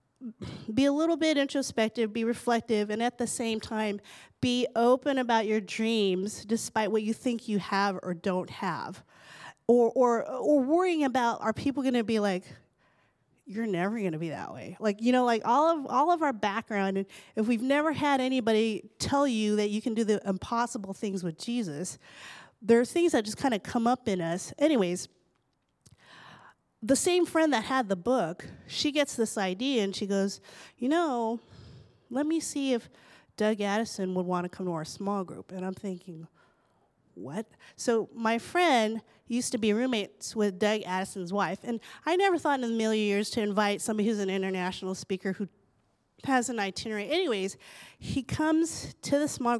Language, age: English, 30-49